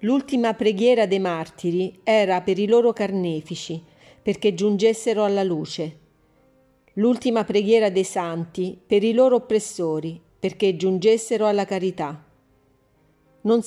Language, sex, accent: Italian, female, native